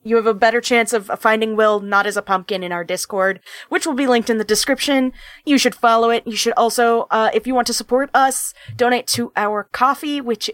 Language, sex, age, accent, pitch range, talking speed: English, female, 20-39, American, 210-265 Hz, 235 wpm